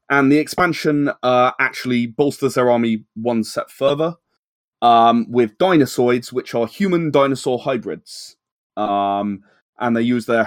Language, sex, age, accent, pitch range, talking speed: English, male, 20-39, British, 110-140 Hz, 140 wpm